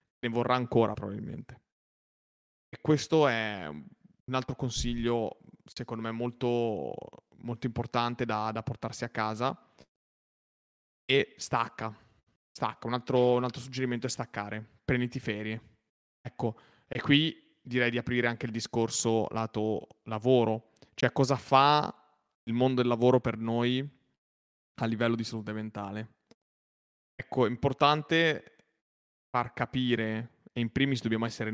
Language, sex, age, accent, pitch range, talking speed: Italian, male, 20-39, native, 110-125 Hz, 125 wpm